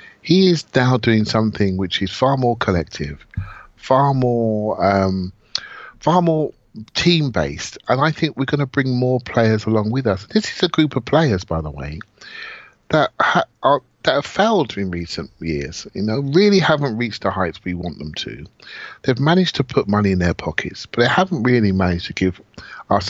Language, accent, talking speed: English, British, 190 wpm